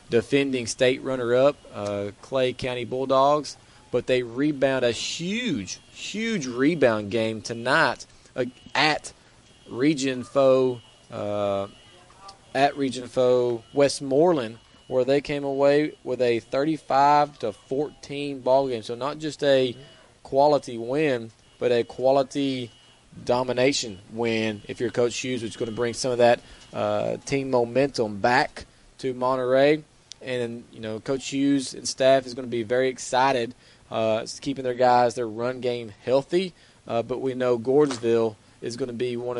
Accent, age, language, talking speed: American, 20-39, English, 145 wpm